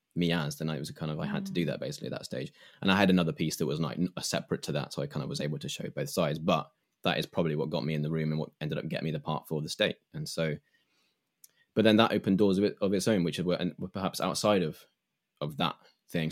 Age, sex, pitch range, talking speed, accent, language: 10-29, male, 80-100 Hz, 285 wpm, British, English